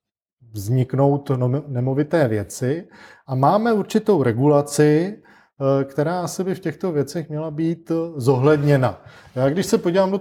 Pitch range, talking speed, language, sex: 130-170 Hz, 125 wpm, Czech, male